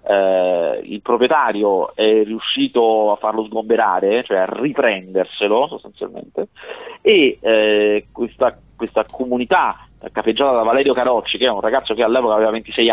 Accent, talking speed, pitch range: native, 135 wpm, 110-140 Hz